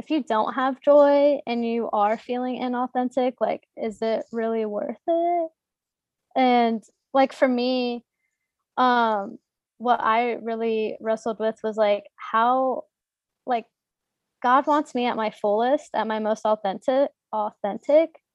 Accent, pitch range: American, 215-255 Hz